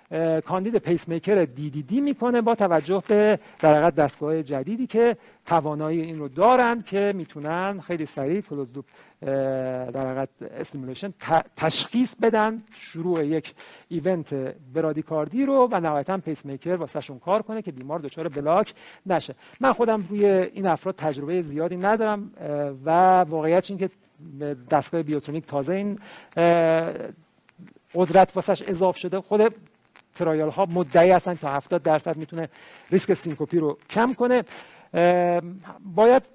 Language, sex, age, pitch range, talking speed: Persian, male, 50-69, 150-200 Hz, 135 wpm